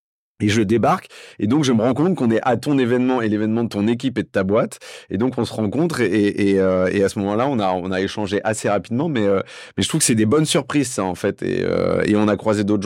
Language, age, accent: French, 30-49, French